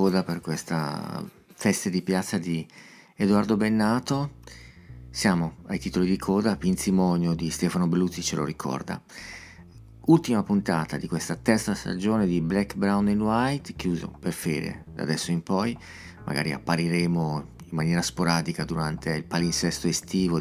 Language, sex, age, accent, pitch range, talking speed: Italian, male, 40-59, native, 85-105 Hz, 140 wpm